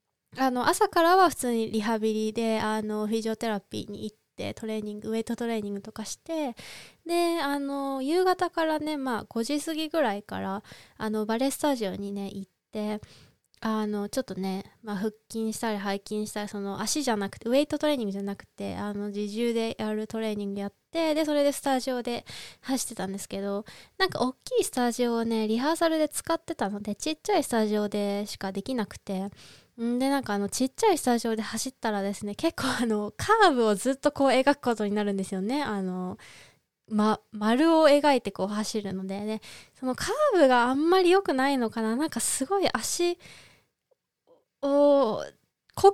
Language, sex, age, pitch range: Japanese, female, 20-39, 210-280 Hz